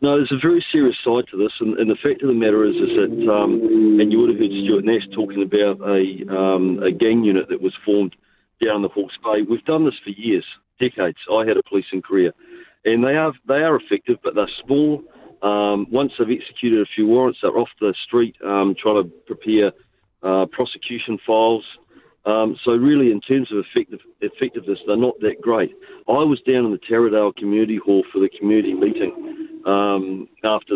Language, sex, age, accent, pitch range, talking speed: English, male, 40-59, Australian, 100-170 Hz, 205 wpm